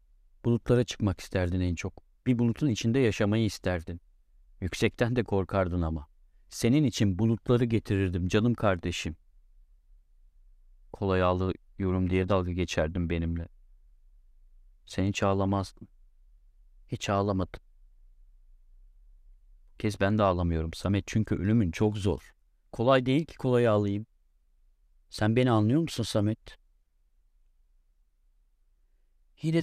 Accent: native